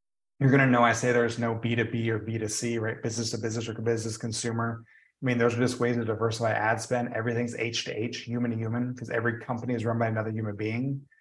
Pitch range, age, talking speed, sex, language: 120-145 Hz, 30-49, 235 wpm, male, English